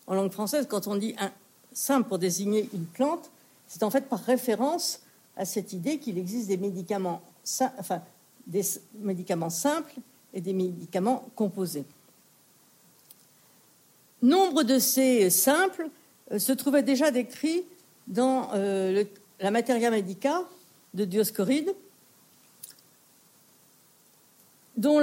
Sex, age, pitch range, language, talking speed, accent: female, 60-79, 200-265 Hz, French, 115 wpm, French